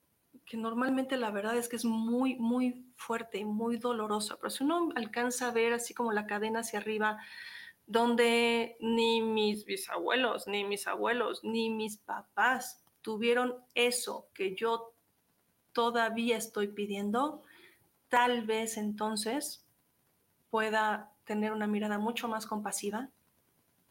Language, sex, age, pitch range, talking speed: Spanish, female, 40-59, 215-245 Hz, 130 wpm